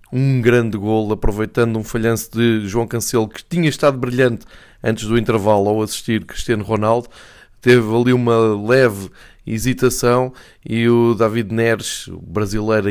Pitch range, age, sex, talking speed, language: 105-125 Hz, 20-39, male, 140 wpm, Portuguese